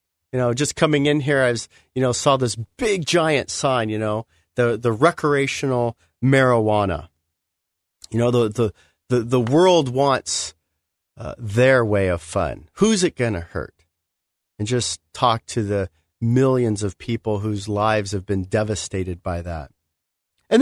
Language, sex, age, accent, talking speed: English, male, 40-59, American, 155 wpm